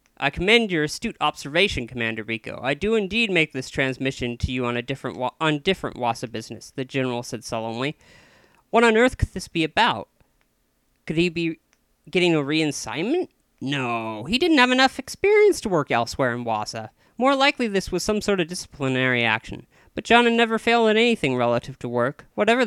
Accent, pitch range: American, 130-200 Hz